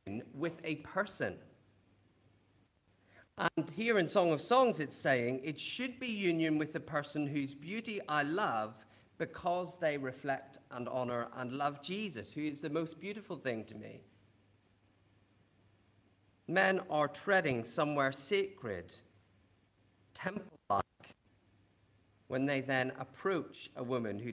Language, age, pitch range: English, 40-59, 105-155 Hz